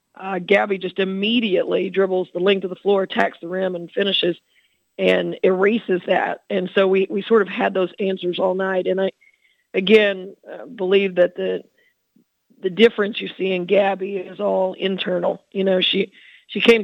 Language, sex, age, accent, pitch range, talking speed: English, female, 40-59, American, 185-205 Hz, 180 wpm